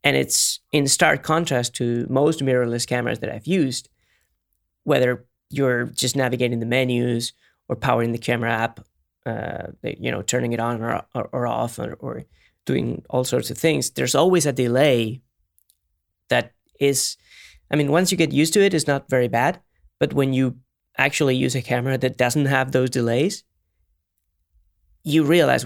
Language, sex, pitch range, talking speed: English, male, 110-140 Hz, 170 wpm